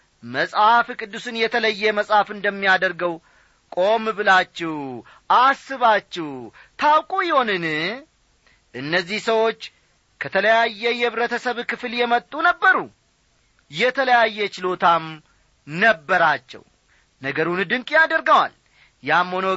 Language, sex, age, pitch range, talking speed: Amharic, male, 40-59, 160-235 Hz, 75 wpm